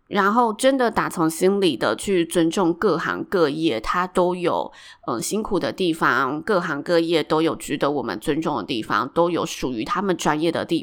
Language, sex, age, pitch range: Chinese, female, 20-39, 165-210 Hz